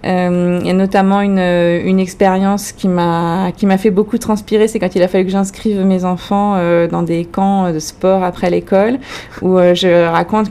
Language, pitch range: French, 180-220 Hz